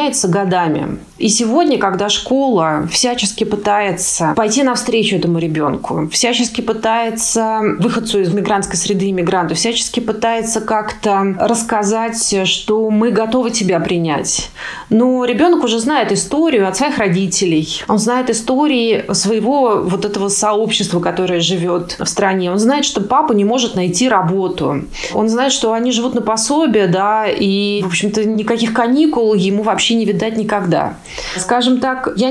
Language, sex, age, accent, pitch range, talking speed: Russian, female, 20-39, native, 195-235 Hz, 140 wpm